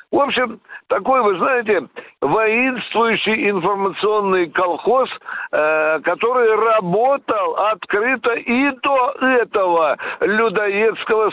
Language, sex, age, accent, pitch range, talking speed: Russian, male, 60-79, native, 170-255 Hz, 80 wpm